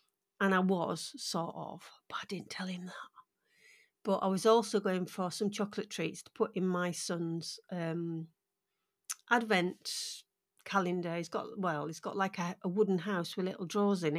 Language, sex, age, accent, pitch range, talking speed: English, female, 40-59, British, 180-215 Hz, 180 wpm